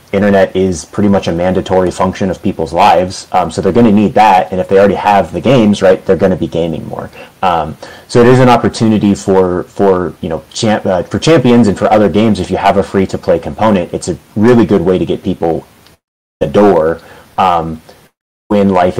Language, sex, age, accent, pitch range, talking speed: English, male, 30-49, American, 95-120 Hz, 220 wpm